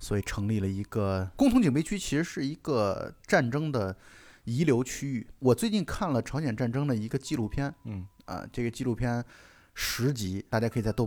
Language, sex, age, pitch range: Chinese, male, 20-39, 110-150 Hz